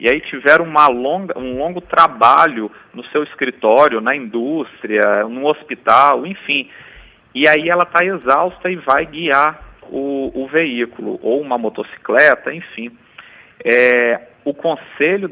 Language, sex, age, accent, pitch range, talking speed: Portuguese, male, 40-59, Brazilian, 120-170 Hz, 135 wpm